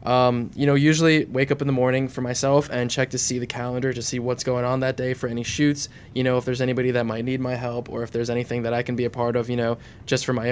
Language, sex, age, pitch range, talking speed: English, male, 20-39, 120-140 Hz, 300 wpm